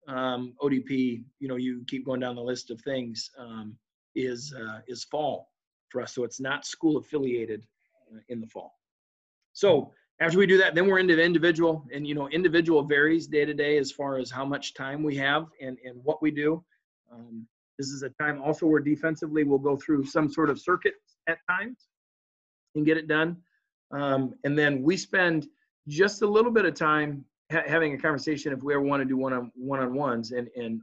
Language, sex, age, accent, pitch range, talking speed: English, male, 40-59, American, 125-165 Hz, 200 wpm